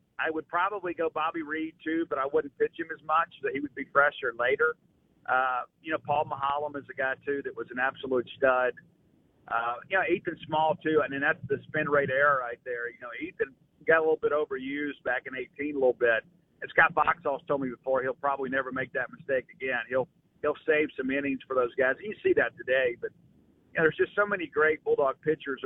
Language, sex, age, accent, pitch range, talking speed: English, male, 40-59, American, 135-170 Hz, 230 wpm